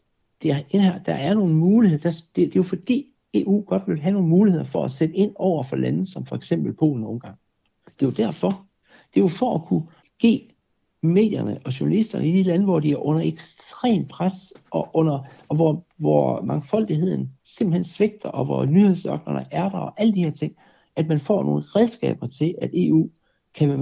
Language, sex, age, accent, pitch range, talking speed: Danish, male, 60-79, native, 130-185 Hz, 205 wpm